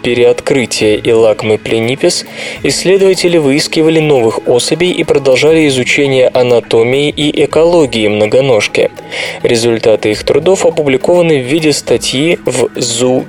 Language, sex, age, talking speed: Russian, male, 20-39, 105 wpm